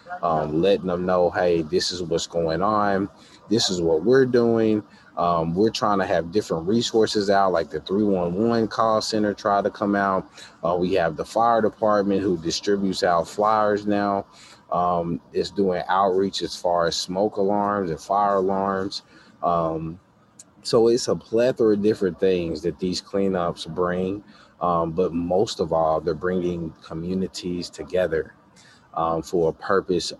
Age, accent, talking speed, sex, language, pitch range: 20-39, American, 160 wpm, male, English, 85-100 Hz